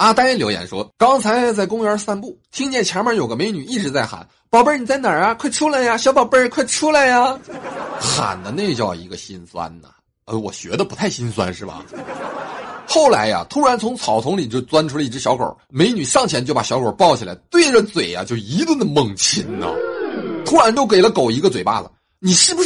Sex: male